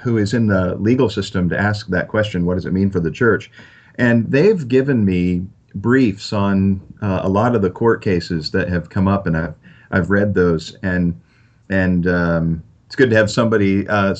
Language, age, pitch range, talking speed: English, 40-59, 90-115 Hz, 205 wpm